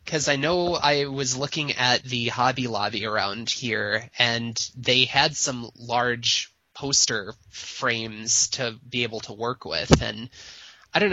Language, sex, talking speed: English, male, 150 wpm